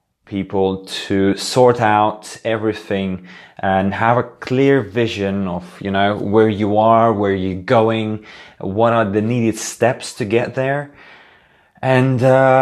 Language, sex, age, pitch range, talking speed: English, male, 20-39, 95-115 Hz, 135 wpm